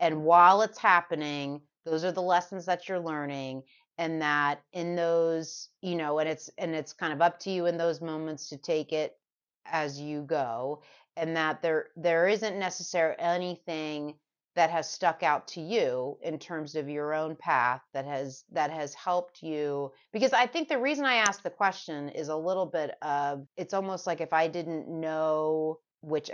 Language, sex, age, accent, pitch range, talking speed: English, female, 30-49, American, 145-180 Hz, 185 wpm